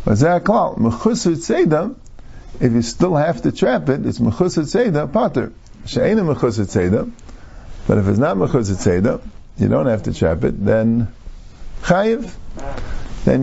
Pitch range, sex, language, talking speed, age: 100-135 Hz, male, English, 155 wpm, 50-69